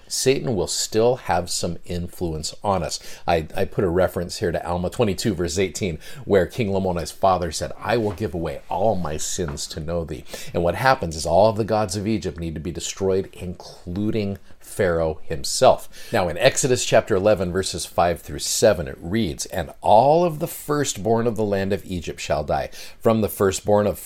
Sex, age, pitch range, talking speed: male, 50-69, 90-125 Hz, 195 wpm